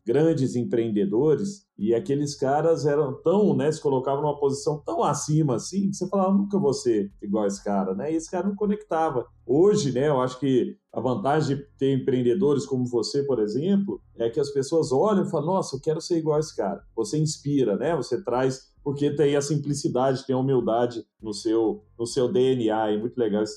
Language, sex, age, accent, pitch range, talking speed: Portuguese, male, 40-59, Brazilian, 125-170 Hz, 200 wpm